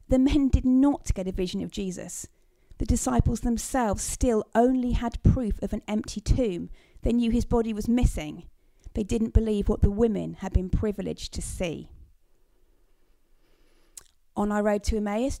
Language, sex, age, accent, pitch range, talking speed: English, female, 40-59, British, 215-260 Hz, 165 wpm